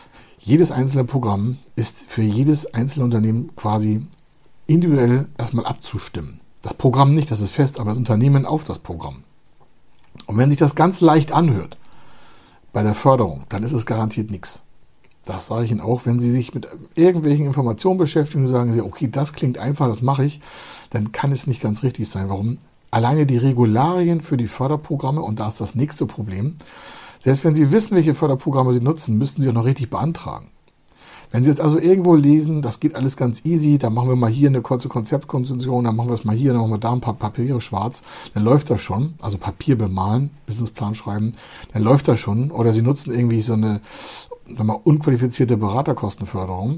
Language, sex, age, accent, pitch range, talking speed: German, male, 60-79, German, 110-145 Hz, 195 wpm